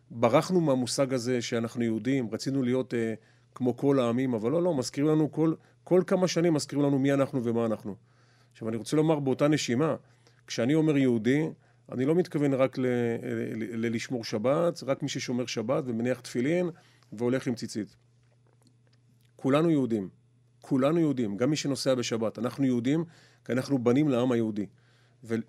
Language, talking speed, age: Hebrew, 150 wpm, 40-59